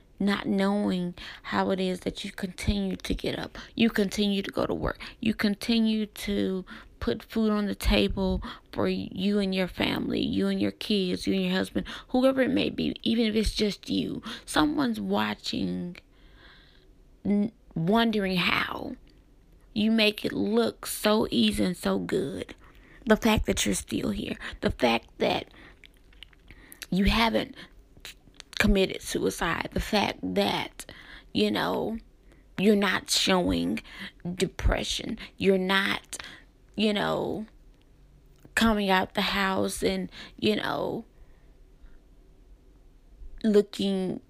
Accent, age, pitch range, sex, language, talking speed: American, 20-39, 185-215 Hz, female, English, 125 wpm